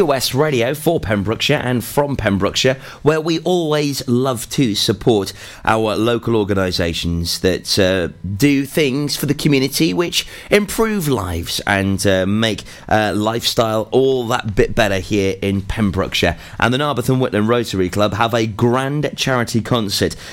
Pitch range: 105-145 Hz